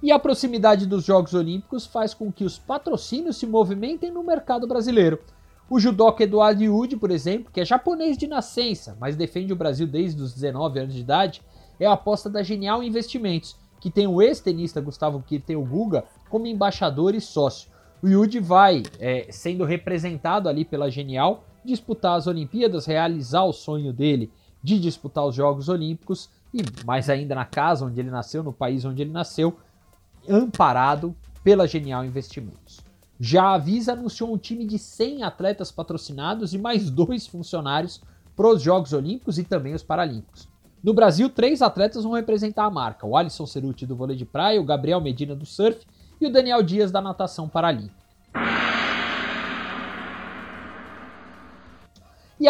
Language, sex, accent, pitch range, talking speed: Portuguese, male, Brazilian, 145-220 Hz, 160 wpm